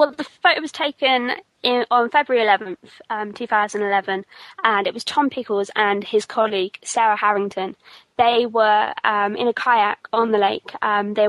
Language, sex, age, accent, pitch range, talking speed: English, female, 20-39, British, 200-230 Hz, 165 wpm